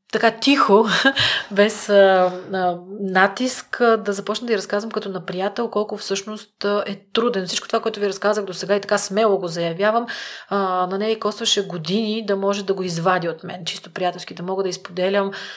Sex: female